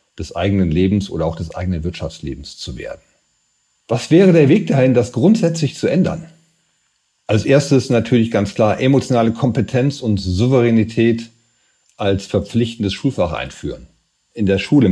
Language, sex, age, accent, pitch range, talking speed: German, male, 40-59, German, 100-125 Hz, 140 wpm